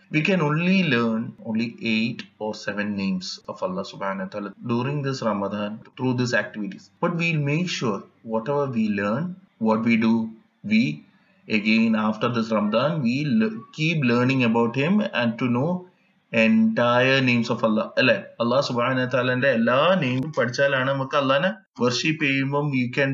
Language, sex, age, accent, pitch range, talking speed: Malayalam, male, 20-39, native, 115-165 Hz, 175 wpm